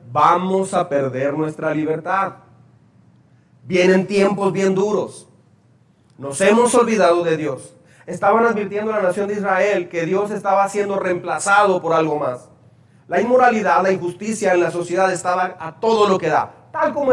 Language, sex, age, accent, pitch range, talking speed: Spanish, male, 40-59, Mexican, 165-210 Hz, 155 wpm